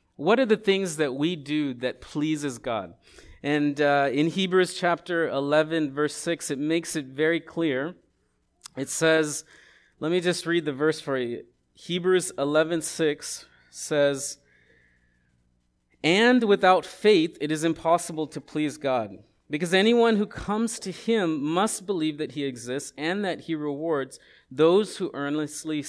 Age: 40-59